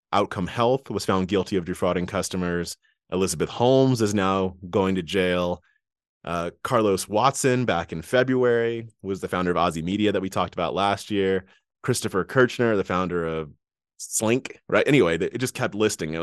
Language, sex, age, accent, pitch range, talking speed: English, male, 30-49, American, 85-105 Hz, 170 wpm